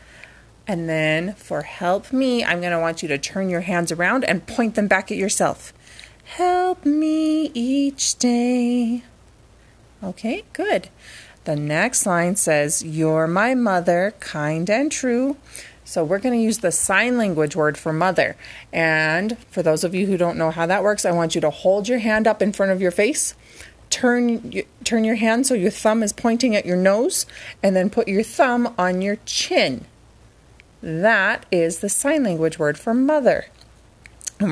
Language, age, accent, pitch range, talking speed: English, 30-49, American, 170-245 Hz, 170 wpm